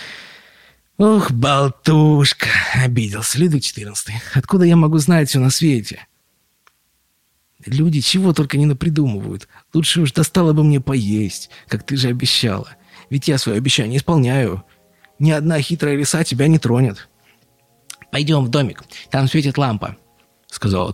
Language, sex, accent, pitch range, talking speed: Russian, male, native, 105-155 Hz, 140 wpm